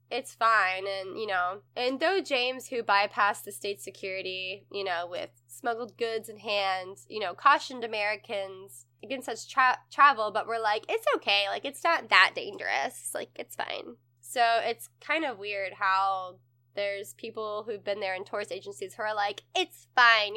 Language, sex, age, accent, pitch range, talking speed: English, female, 10-29, American, 195-250 Hz, 175 wpm